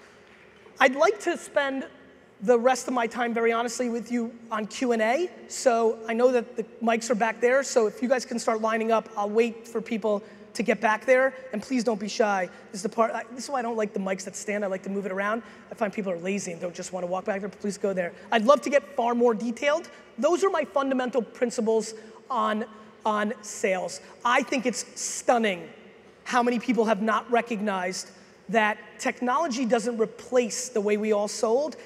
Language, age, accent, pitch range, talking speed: English, 20-39, American, 215-255 Hz, 215 wpm